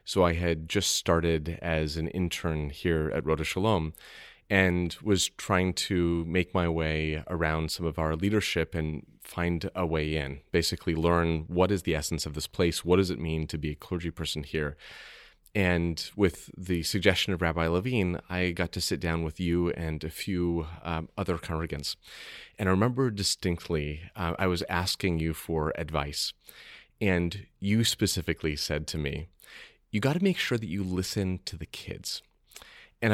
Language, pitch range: English, 80-100 Hz